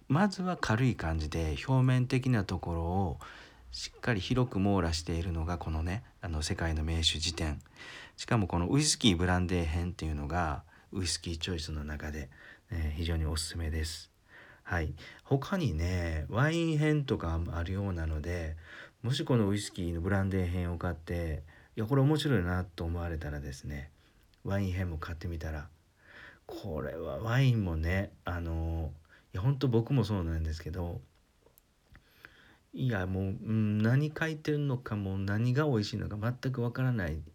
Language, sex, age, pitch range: Japanese, male, 40-59, 80-110 Hz